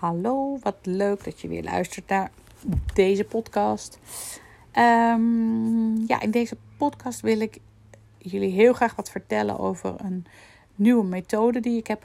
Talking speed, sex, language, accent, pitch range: 145 wpm, female, Dutch, Dutch, 170-220 Hz